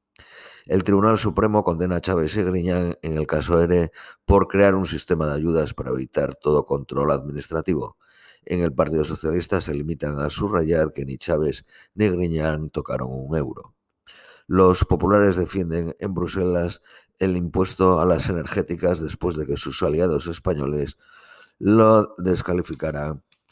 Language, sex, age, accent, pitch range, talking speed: Spanish, male, 50-69, Spanish, 80-95 Hz, 145 wpm